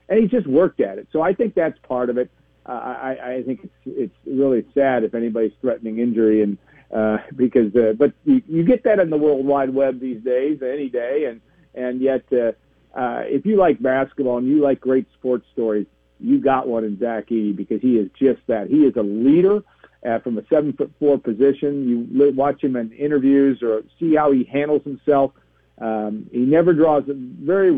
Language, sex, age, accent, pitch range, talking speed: English, male, 50-69, American, 125-150 Hz, 205 wpm